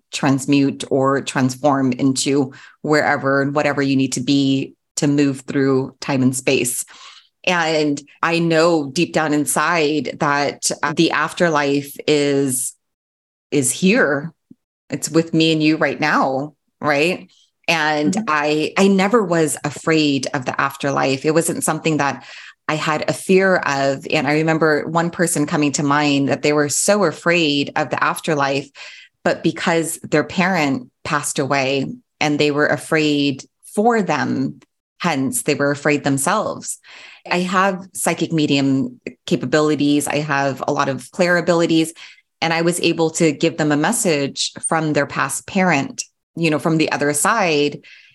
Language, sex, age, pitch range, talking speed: English, female, 30-49, 140-165 Hz, 150 wpm